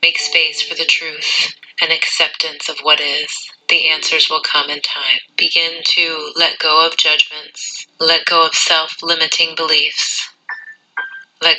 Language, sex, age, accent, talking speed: English, female, 30-49, American, 145 wpm